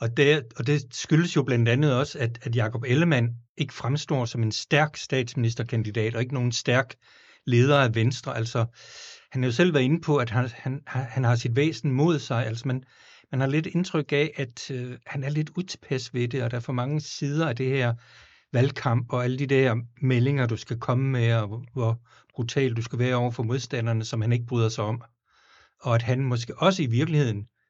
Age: 60-79